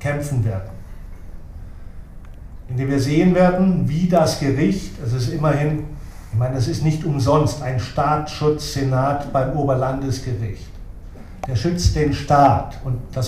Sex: male